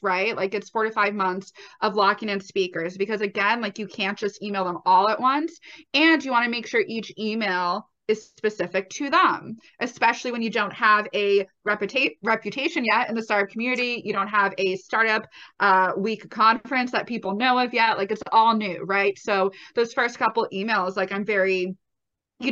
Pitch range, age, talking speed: 190-235 Hz, 20-39, 195 wpm